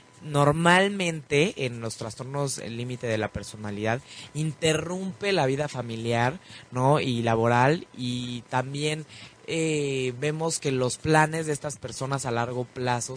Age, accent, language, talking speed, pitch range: 20-39, Mexican, Spanish, 130 wpm, 125-150 Hz